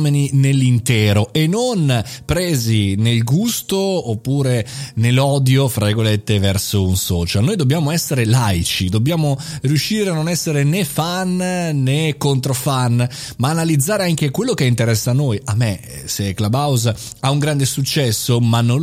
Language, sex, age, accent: Italian, male, 30-49, native